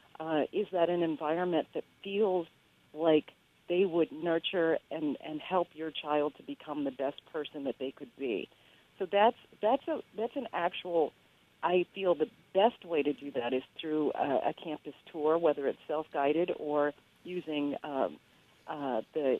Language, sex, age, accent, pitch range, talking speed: English, female, 50-69, American, 145-190 Hz, 170 wpm